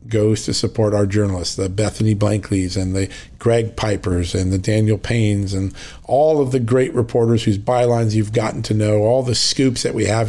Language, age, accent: English, 40-59, American